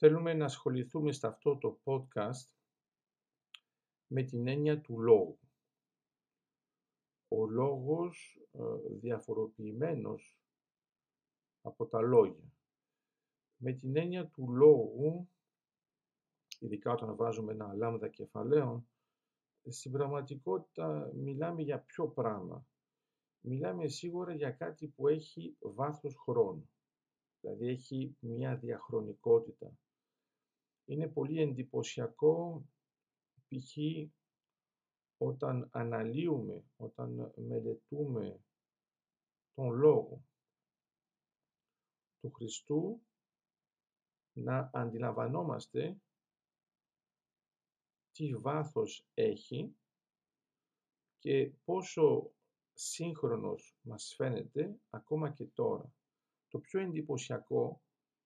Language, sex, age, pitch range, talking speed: Greek, male, 50-69, 125-155 Hz, 80 wpm